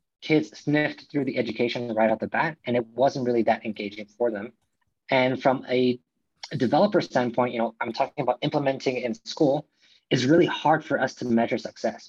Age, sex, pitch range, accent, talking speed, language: 20-39, male, 115-145 Hz, American, 195 wpm, English